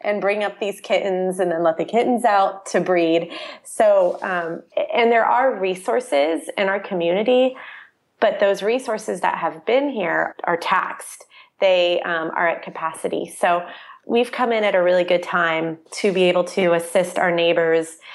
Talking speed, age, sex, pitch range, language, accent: 170 wpm, 30-49, female, 170-205 Hz, English, American